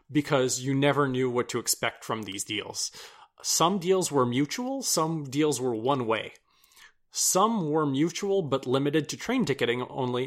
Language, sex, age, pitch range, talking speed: English, male, 30-49, 120-150 Hz, 165 wpm